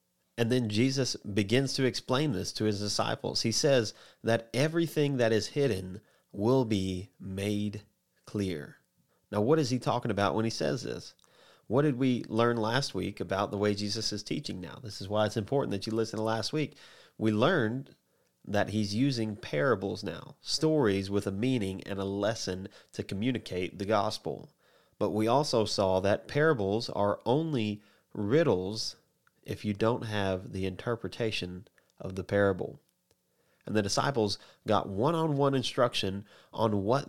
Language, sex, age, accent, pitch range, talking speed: English, male, 30-49, American, 100-125 Hz, 160 wpm